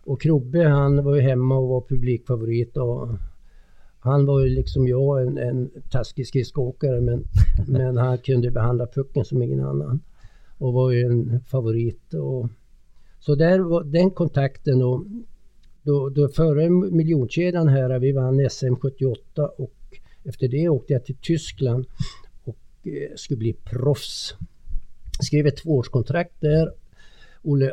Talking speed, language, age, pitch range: 140 wpm, Swedish, 60-79, 120-145 Hz